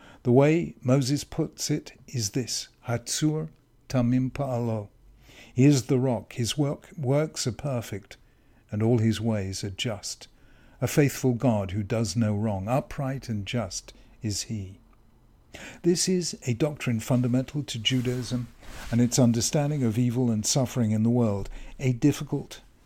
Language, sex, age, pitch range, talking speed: English, male, 60-79, 110-135 Hz, 145 wpm